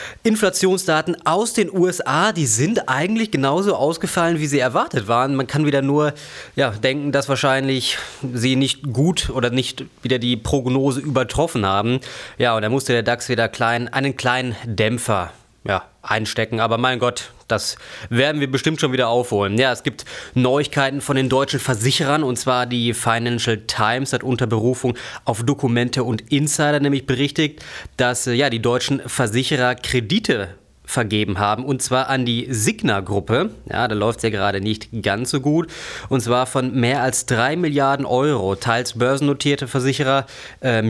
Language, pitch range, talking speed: German, 120-140 Hz, 160 wpm